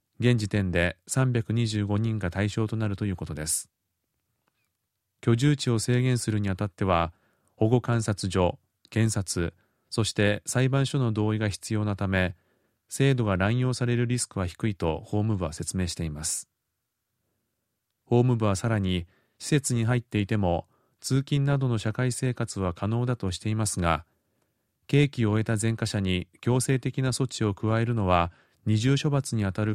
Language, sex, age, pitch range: Japanese, male, 30-49, 95-125 Hz